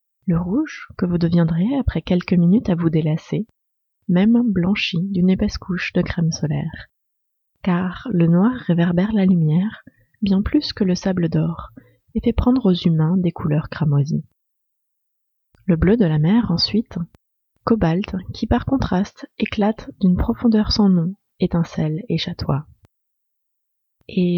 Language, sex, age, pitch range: French, female, 30-49, 160-210 Hz